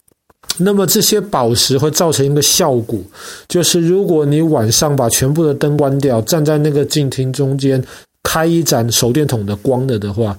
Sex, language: male, Chinese